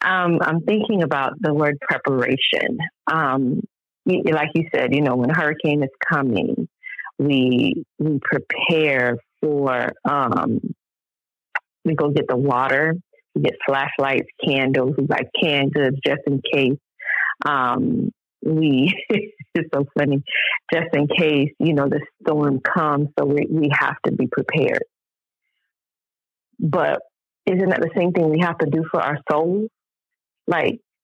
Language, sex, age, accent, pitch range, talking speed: English, female, 30-49, American, 140-165 Hz, 140 wpm